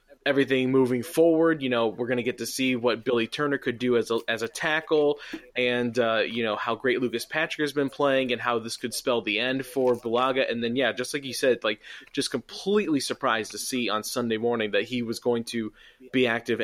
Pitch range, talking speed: 115-135 Hz, 230 wpm